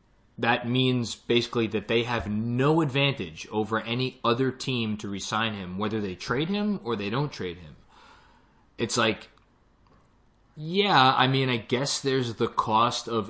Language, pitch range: English, 100-120 Hz